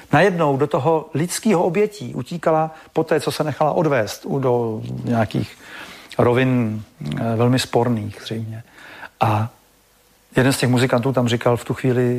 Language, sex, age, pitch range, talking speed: Slovak, male, 50-69, 120-160 Hz, 140 wpm